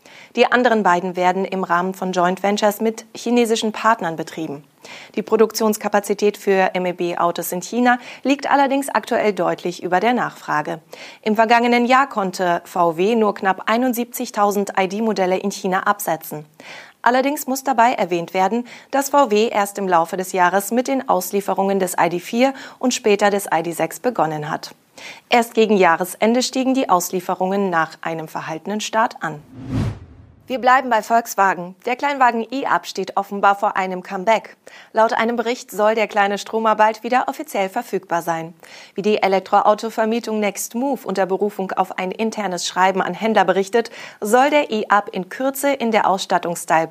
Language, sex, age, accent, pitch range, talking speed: German, female, 30-49, German, 180-235 Hz, 150 wpm